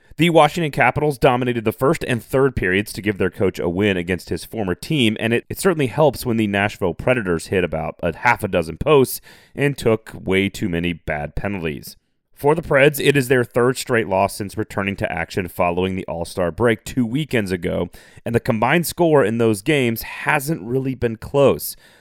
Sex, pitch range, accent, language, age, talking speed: male, 95-130 Hz, American, English, 30-49, 200 wpm